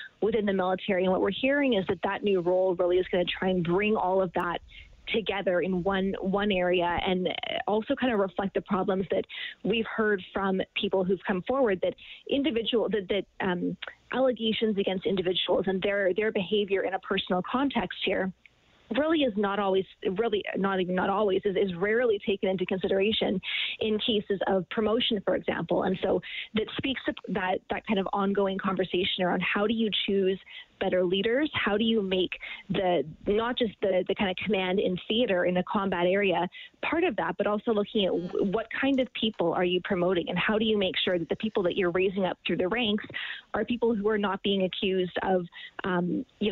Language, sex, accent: English, female, American